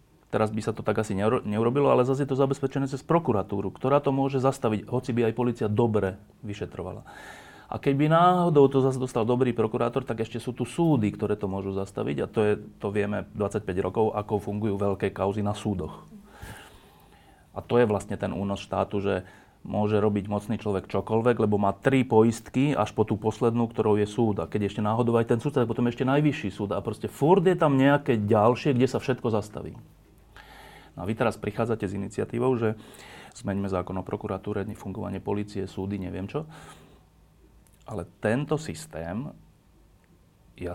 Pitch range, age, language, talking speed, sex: 100-125 Hz, 30-49, Slovak, 180 wpm, male